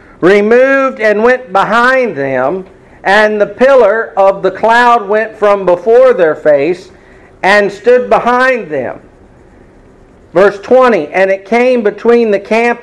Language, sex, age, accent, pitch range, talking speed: English, male, 50-69, American, 185-225 Hz, 130 wpm